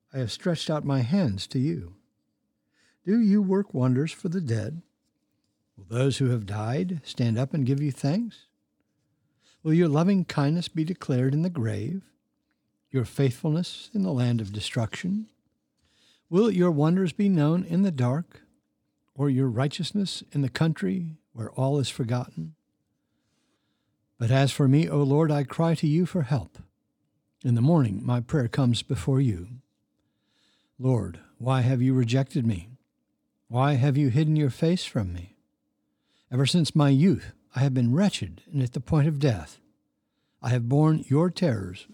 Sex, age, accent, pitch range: male, 60-79, American, 120-160 Hz